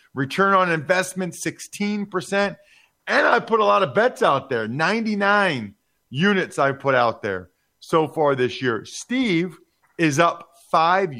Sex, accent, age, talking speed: male, American, 40-59, 150 wpm